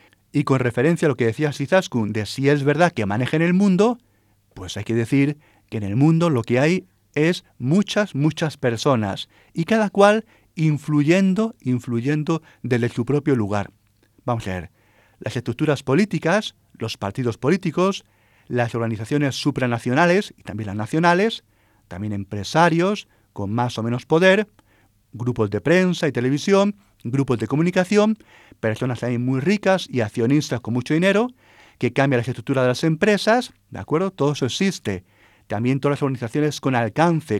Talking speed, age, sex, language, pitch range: 160 wpm, 40-59, male, Spanish, 115-165 Hz